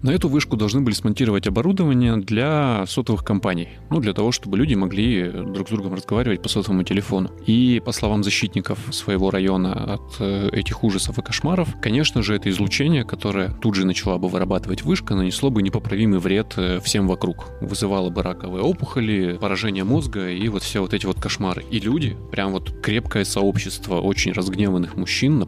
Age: 20-39